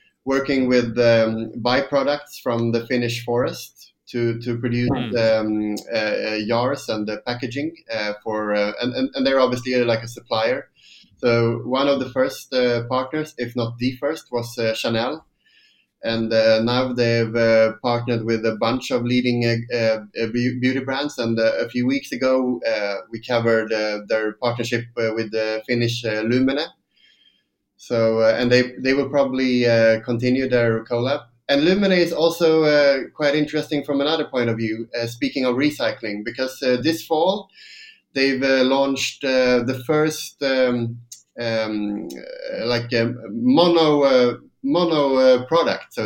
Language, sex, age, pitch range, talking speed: English, male, 20-39, 115-140 Hz, 160 wpm